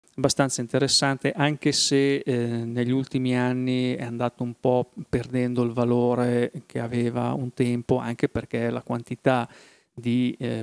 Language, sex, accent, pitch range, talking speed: Italian, male, native, 120-135 Hz, 140 wpm